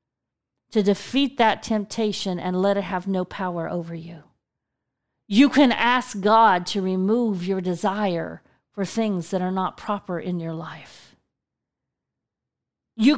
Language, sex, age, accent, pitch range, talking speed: English, female, 40-59, American, 190-235 Hz, 135 wpm